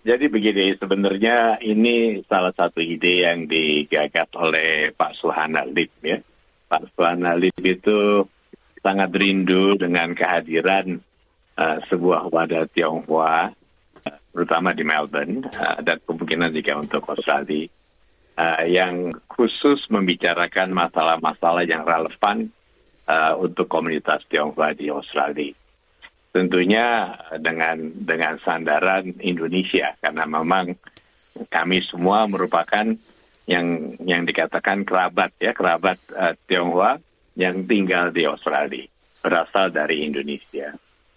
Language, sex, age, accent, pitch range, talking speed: Indonesian, male, 50-69, native, 80-95 Hz, 105 wpm